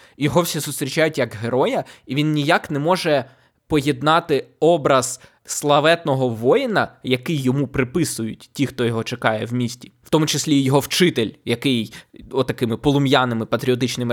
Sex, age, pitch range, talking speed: male, 20-39, 125-155 Hz, 140 wpm